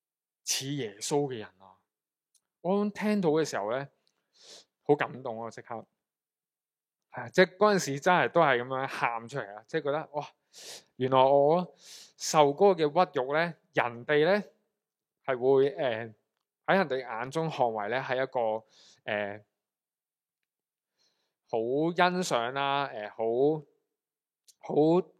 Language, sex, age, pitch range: Chinese, male, 20-39, 120-170 Hz